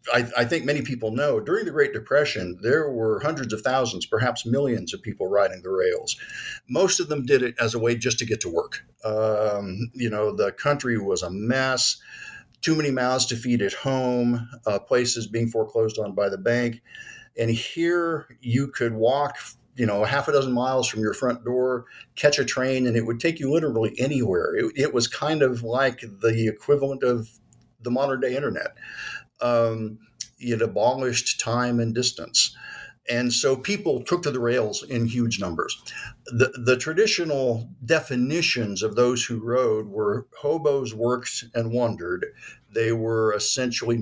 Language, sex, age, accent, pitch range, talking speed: English, male, 50-69, American, 115-140 Hz, 175 wpm